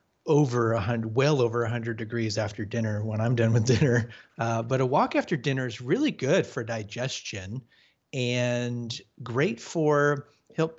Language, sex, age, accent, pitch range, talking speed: English, male, 40-59, American, 115-145 Hz, 155 wpm